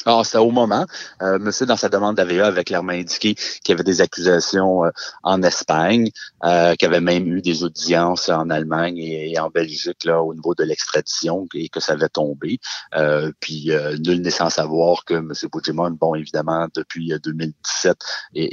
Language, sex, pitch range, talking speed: French, male, 80-95 Hz, 190 wpm